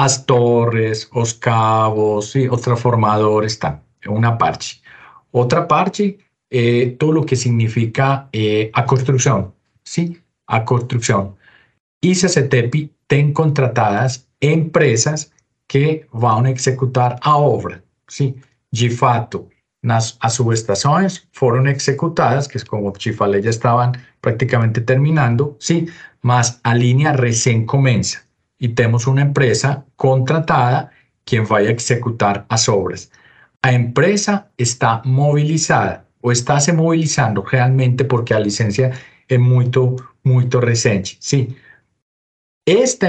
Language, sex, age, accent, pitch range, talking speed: Portuguese, male, 40-59, Colombian, 120-145 Hz, 120 wpm